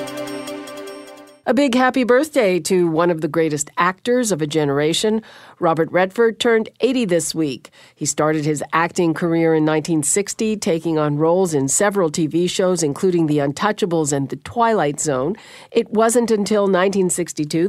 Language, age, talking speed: English, 50-69, 150 wpm